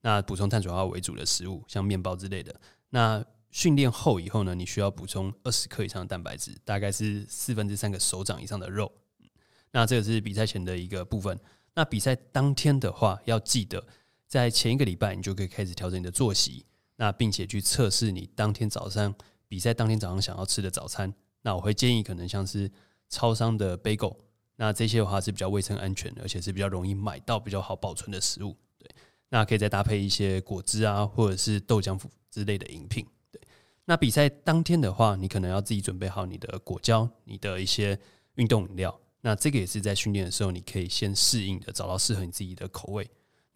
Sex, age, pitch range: male, 20-39, 95-115 Hz